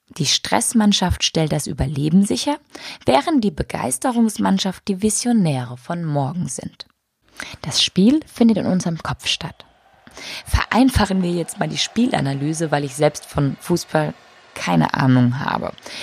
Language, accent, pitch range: German, German, 145-225 Hz